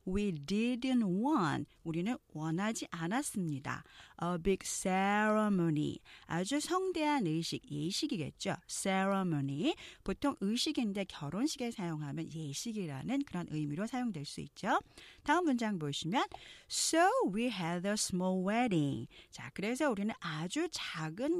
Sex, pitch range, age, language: female, 165-260 Hz, 40-59, Korean